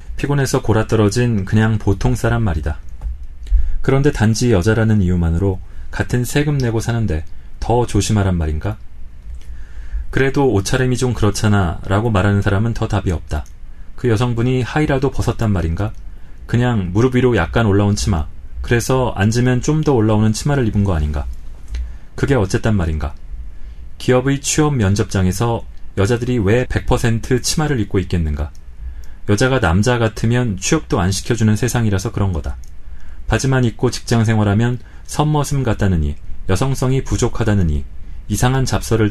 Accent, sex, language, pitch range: native, male, Korean, 80-125 Hz